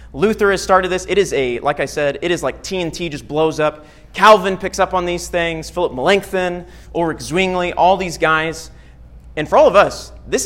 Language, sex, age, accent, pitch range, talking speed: English, male, 30-49, American, 135-190 Hz, 205 wpm